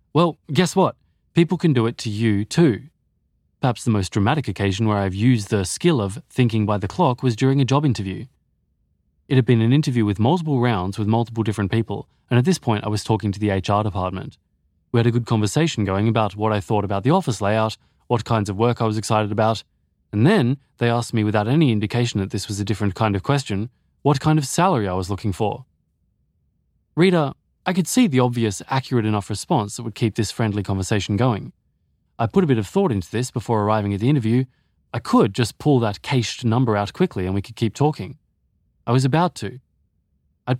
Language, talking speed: English, 220 wpm